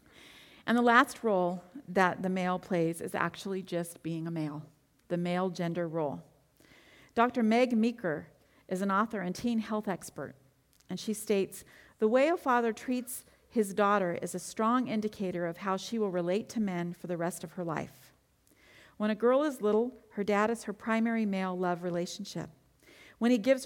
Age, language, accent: 40-59, English, American